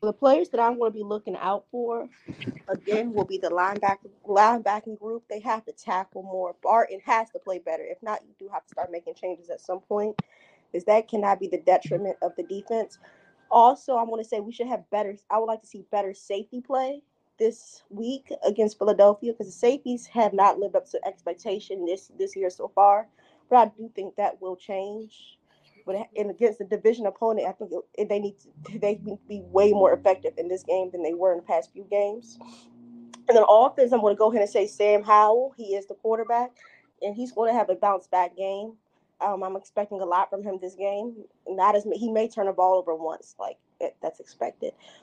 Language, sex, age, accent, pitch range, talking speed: English, female, 20-39, American, 195-230 Hz, 215 wpm